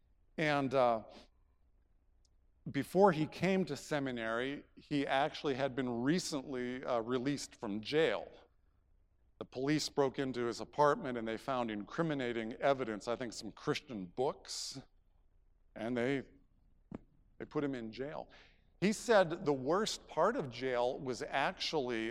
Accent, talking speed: American, 130 wpm